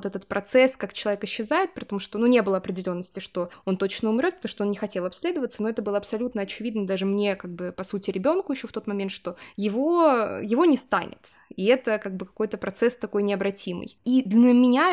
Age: 20-39